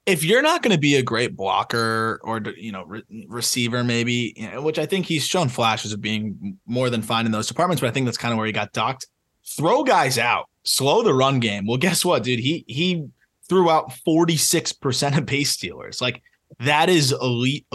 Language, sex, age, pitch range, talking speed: English, male, 20-39, 110-145 Hz, 215 wpm